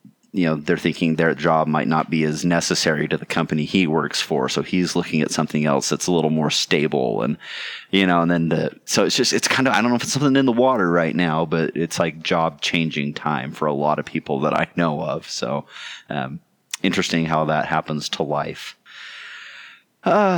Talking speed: 220 wpm